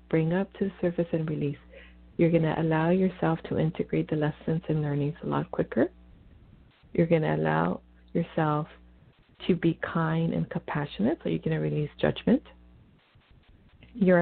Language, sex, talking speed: English, female, 160 wpm